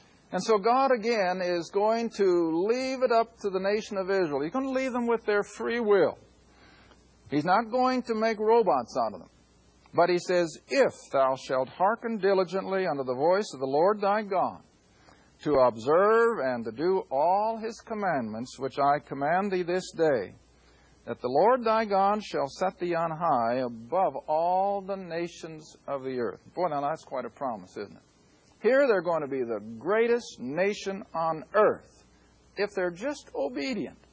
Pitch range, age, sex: 140-220 Hz, 50-69, male